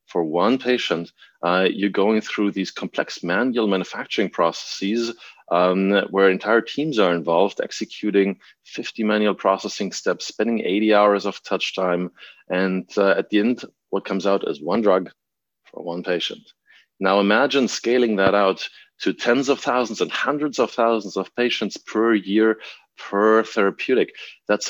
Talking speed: 155 wpm